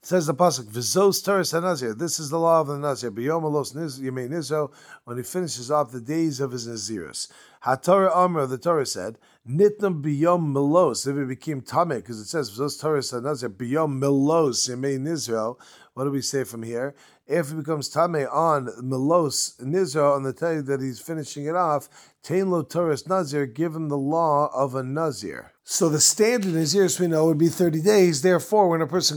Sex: male